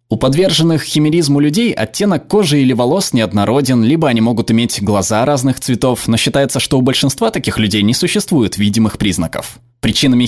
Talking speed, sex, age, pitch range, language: 165 wpm, male, 20-39, 115-150 Hz, Russian